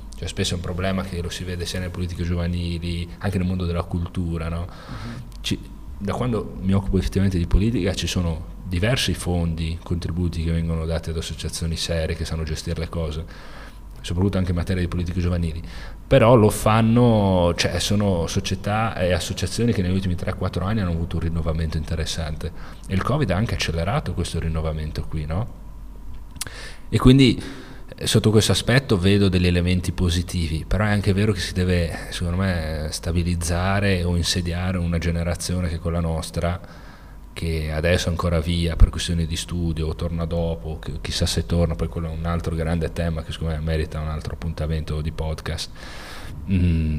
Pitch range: 80-95 Hz